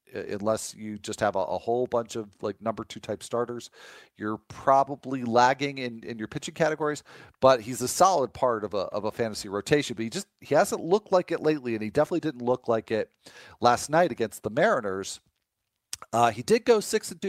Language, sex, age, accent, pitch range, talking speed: English, male, 40-59, American, 115-150 Hz, 210 wpm